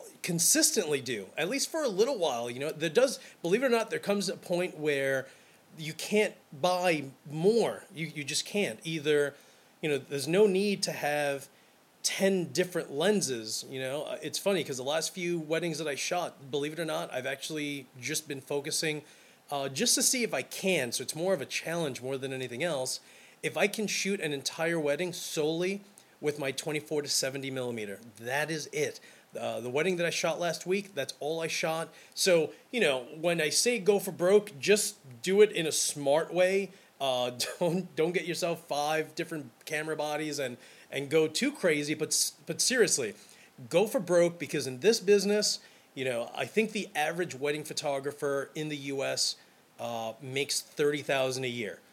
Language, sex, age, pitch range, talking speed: English, male, 30-49, 145-190 Hz, 190 wpm